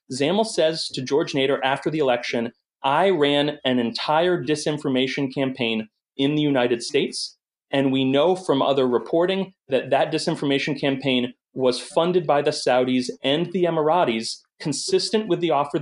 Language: English